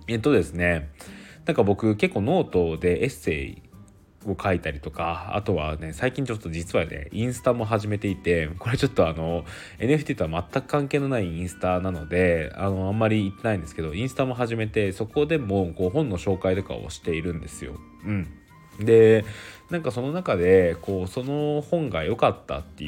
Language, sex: Japanese, male